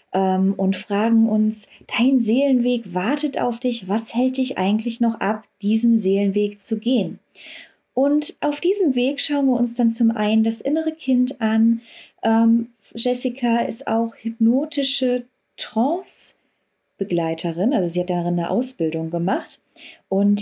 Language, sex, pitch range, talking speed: German, female, 205-250 Hz, 130 wpm